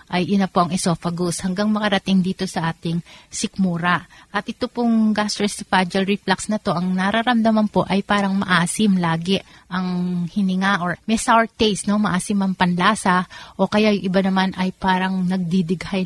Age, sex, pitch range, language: 30-49, female, 180-205 Hz, Filipino